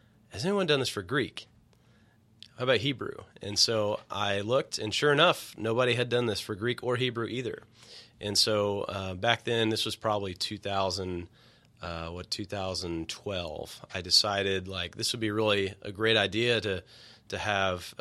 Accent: American